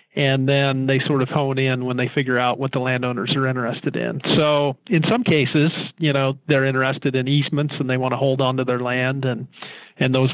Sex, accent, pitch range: male, American, 130-150 Hz